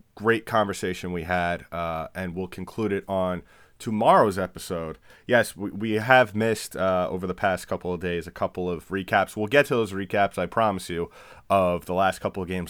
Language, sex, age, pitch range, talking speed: English, male, 30-49, 90-110 Hz, 200 wpm